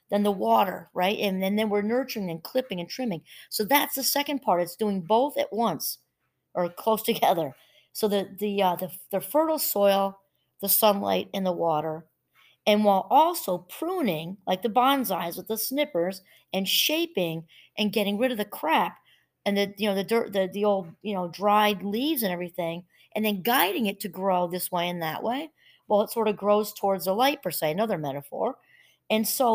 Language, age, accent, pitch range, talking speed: English, 40-59, American, 180-225 Hz, 195 wpm